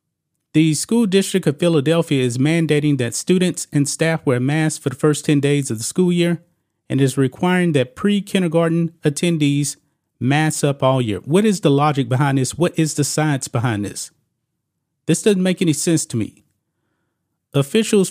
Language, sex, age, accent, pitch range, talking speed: English, male, 30-49, American, 135-165 Hz, 170 wpm